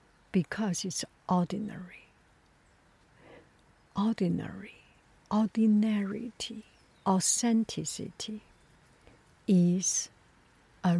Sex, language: female, English